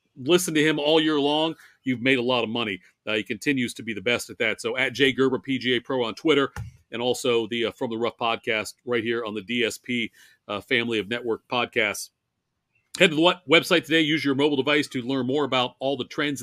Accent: American